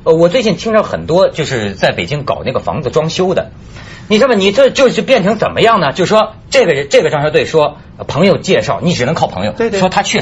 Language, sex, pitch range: Chinese, male, 195-290 Hz